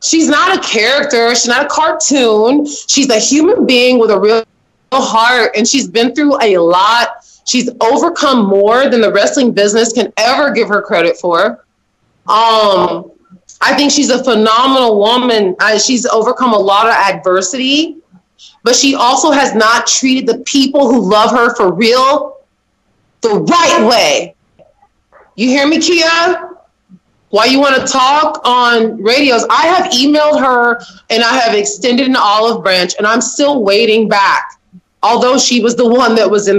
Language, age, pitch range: English, 20-39, 215-275 Hz